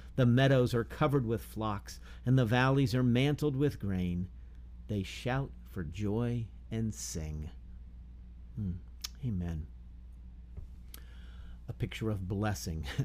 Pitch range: 85-115 Hz